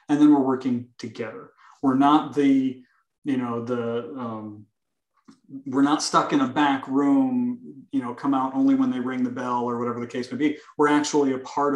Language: English